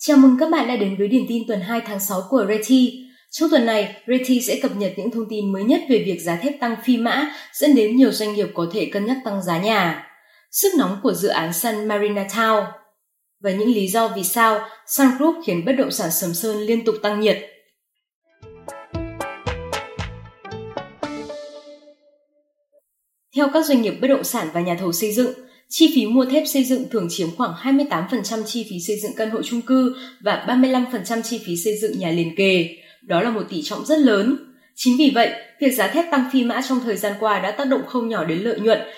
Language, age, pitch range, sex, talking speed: Vietnamese, 20-39, 200-260 Hz, female, 215 wpm